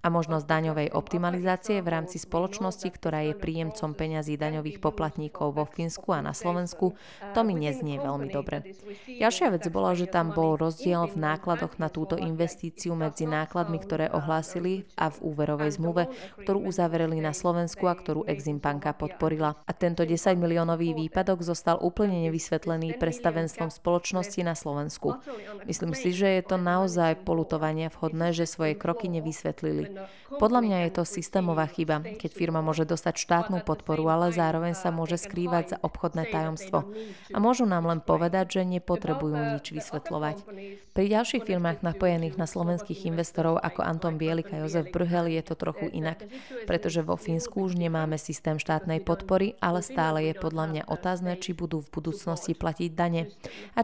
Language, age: Slovak, 20-39